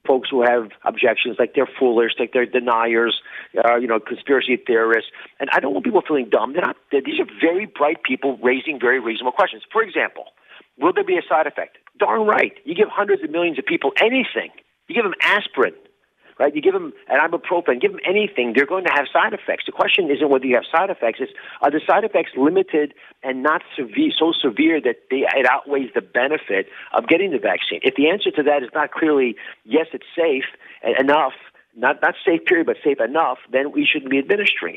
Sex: male